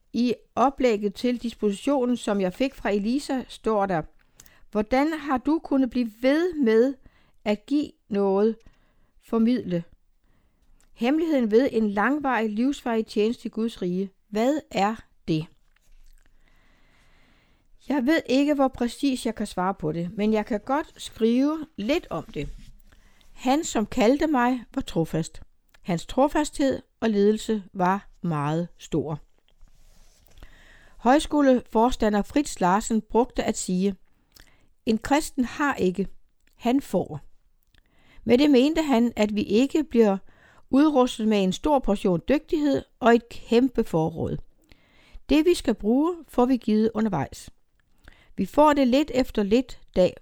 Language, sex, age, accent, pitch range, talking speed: Danish, female, 60-79, native, 200-270 Hz, 130 wpm